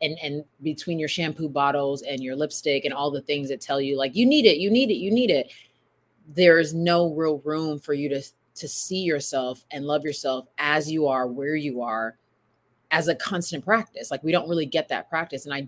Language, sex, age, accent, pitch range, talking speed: English, female, 30-49, American, 135-160 Hz, 220 wpm